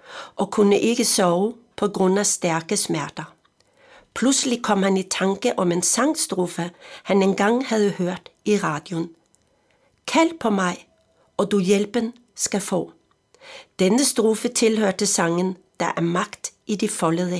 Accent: native